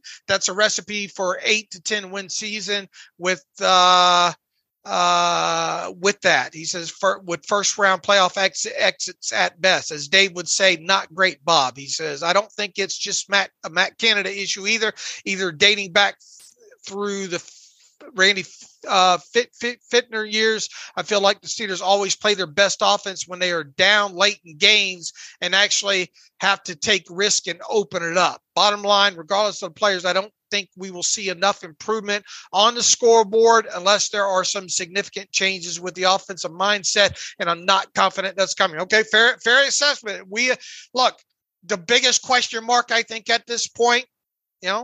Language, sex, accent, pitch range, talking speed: English, male, American, 185-215 Hz, 180 wpm